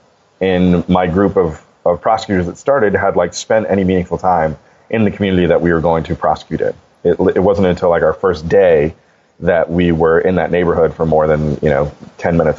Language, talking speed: English, 215 wpm